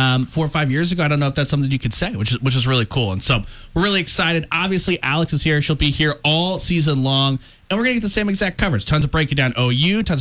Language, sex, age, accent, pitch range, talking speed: English, male, 30-49, American, 125-165 Hz, 300 wpm